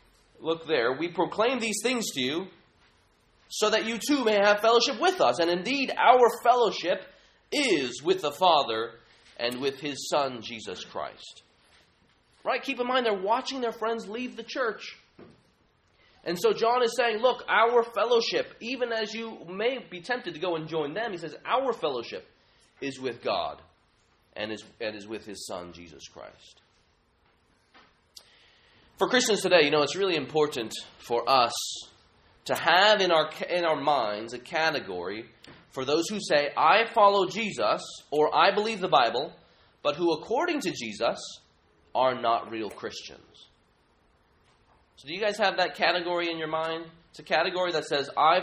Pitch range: 145-225 Hz